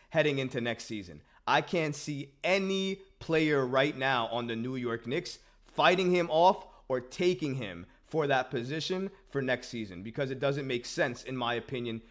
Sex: male